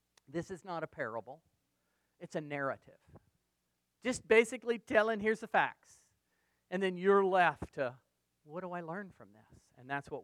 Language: English